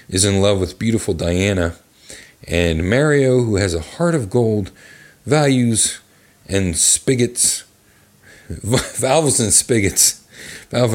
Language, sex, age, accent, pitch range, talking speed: English, male, 40-59, American, 90-125 Hz, 115 wpm